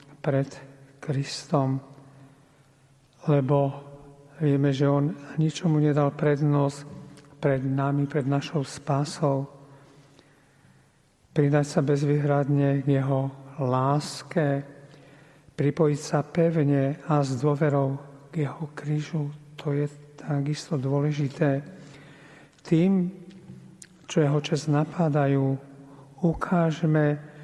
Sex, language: male, Slovak